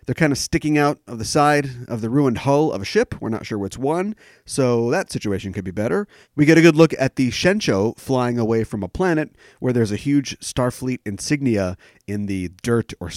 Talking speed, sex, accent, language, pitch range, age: 225 wpm, male, American, English, 100-135 Hz, 40-59